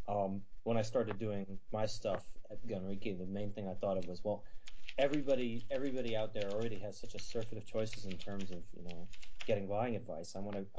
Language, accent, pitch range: English, American, 95-115 Hz